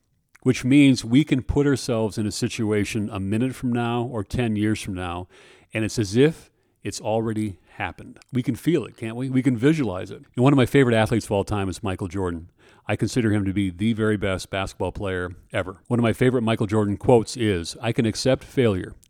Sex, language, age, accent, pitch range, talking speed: male, English, 40-59, American, 100-130 Hz, 220 wpm